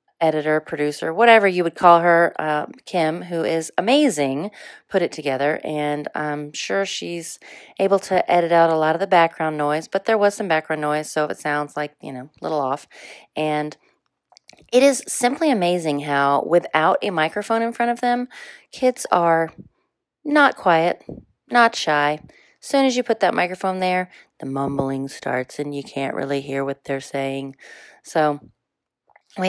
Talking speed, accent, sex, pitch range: 170 wpm, American, female, 150-185 Hz